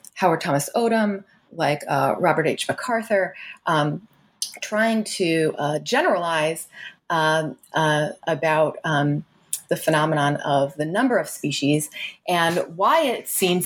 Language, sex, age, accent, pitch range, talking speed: English, female, 30-49, American, 150-190 Hz, 125 wpm